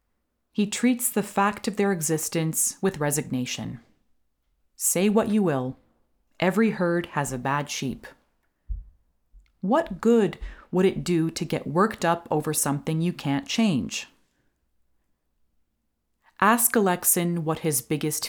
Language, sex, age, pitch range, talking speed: English, female, 30-49, 135-190 Hz, 125 wpm